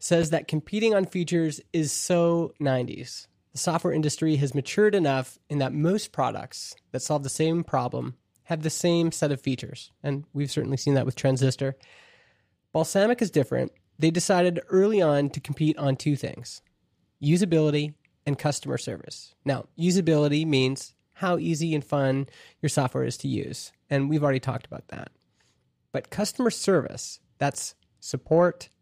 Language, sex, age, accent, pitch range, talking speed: English, male, 20-39, American, 135-170 Hz, 155 wpm